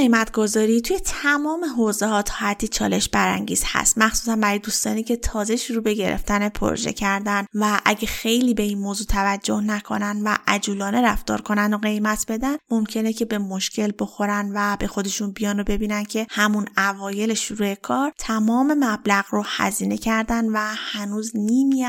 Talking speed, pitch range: 160 wpm, 205-230 Hz